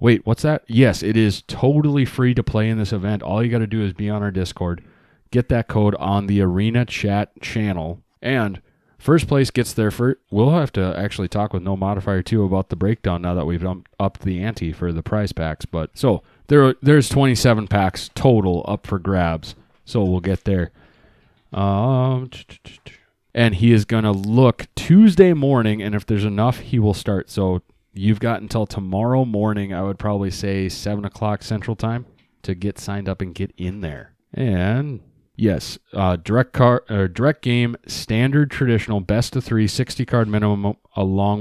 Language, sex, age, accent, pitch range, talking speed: English, male, 30-49, American, 95-120 Hz, 185 wpm